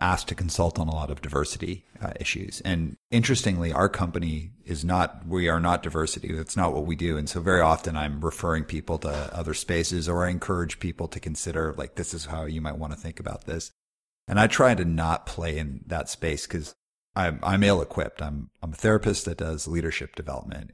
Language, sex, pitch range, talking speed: English, male, 80-95 Hz, 205 wpm